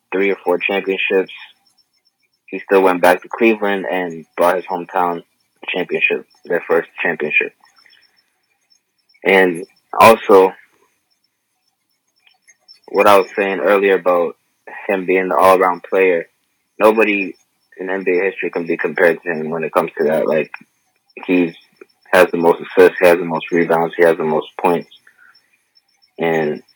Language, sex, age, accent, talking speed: English, male, 20-39, American, 140 wpm